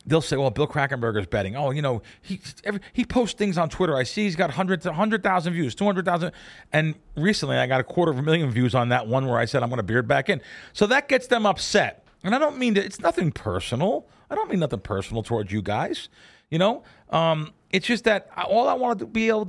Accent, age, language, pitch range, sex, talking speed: American, 40-59, English, 135-200 Hz, male, 245 wpm